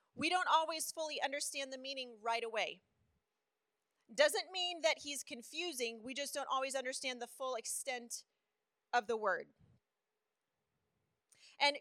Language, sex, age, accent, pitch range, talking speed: English, female, 30-49, American, 260-315 Hz, 130 wpm